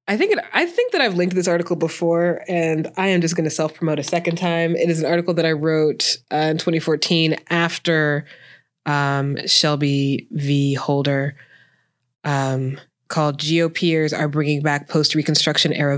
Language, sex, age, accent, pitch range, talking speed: English, female, 20-39, American, 140-165 Hz, 160 wpm